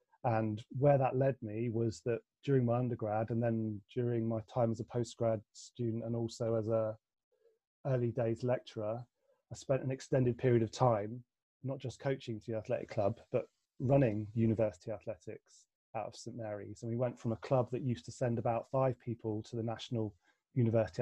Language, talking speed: English, 185 wpm